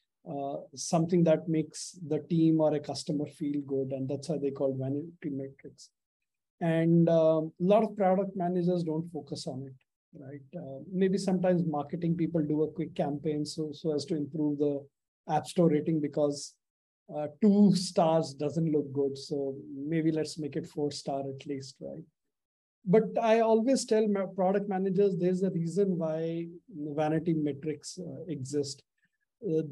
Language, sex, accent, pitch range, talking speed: English, male, Indian, 150-185 Hz, 160 wpm